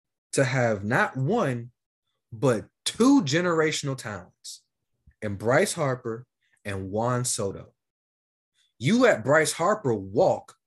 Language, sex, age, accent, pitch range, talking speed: English, male, 30-49, American, 115-160 Hz, 105 wpm